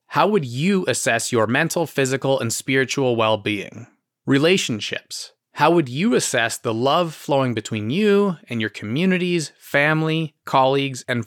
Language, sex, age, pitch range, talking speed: English, male, 30-49, 120-160 Hz, 140 wpm